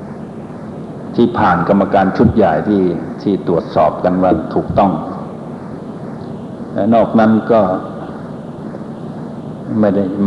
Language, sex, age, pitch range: Thai, male, 60-79, 105-155 Hz